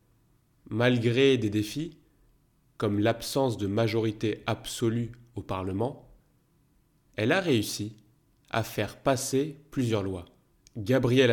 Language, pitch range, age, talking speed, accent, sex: French, 105-135 Hz, 30-49, 100 wpm, French, male